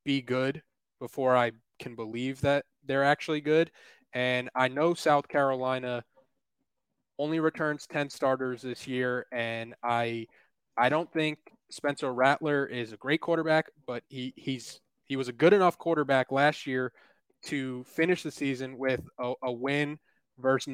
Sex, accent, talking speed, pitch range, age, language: male, American, 150 wpm, 125-145 Hz, 20-39, English